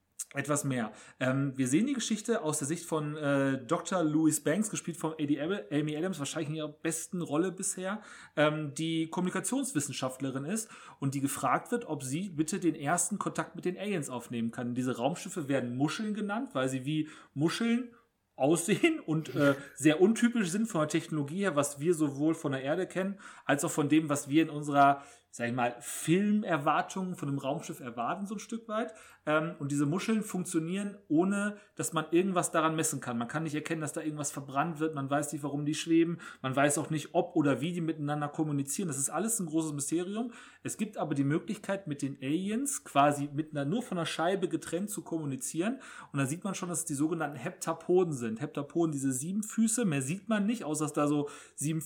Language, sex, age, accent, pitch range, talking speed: German, male, 30-49, German, 145-185 Hz, 200 wpm